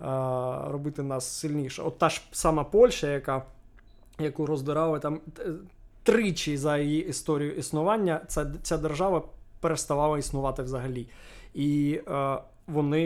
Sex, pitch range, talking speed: male, 130-155 Hz, 110 wpm